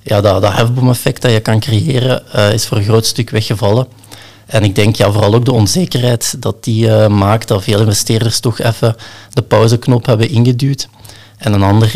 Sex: male